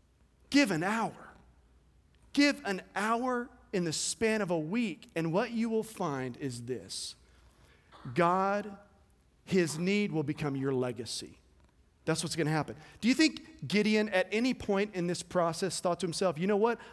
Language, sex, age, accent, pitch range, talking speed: English, male, 40-59, American, 175-255 Hz, 165 wpm